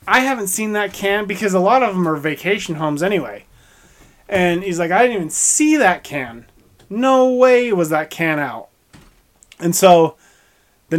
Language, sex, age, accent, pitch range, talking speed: English, male, 20-39, American, 145-180 Hz, 175 wpm